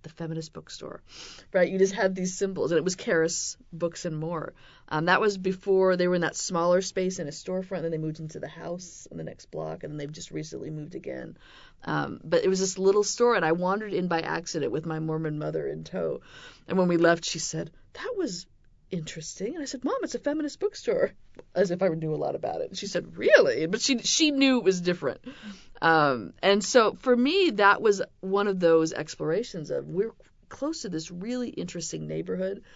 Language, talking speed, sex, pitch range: English, 220 wpm, female, 160-205 Hz